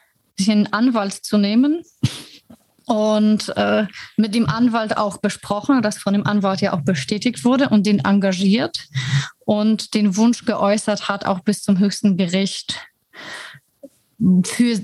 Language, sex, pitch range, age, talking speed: German, female, 190-215 Hz, 30-49, 135 wpm